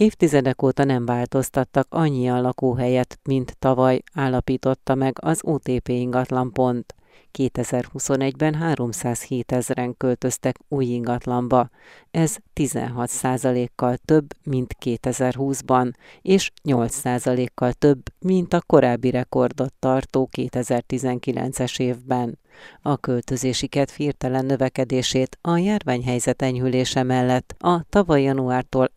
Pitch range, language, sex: 125-140 Hz, Hungarian, female